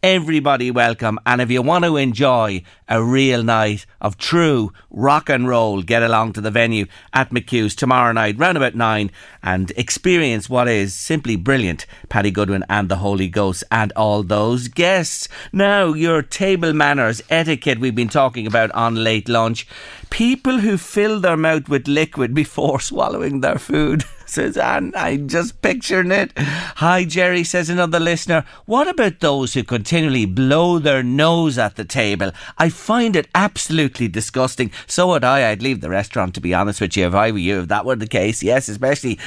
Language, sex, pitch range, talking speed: English, male, 110-165 Hz, 180 wpm